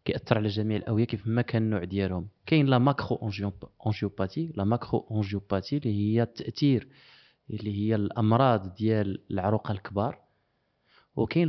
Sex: male